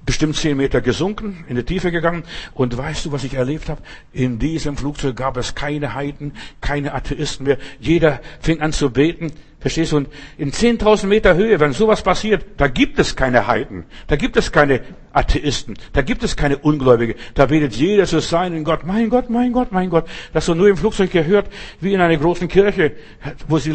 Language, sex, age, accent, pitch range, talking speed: German, male, 60-79, German, 135-185 Hz, 200 wpm